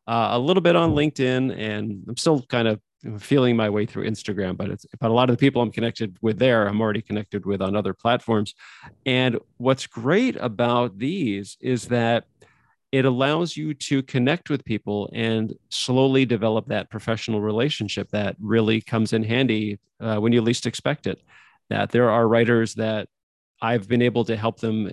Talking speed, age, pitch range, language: 185 wpm, 40-59, 110-130 Hz, English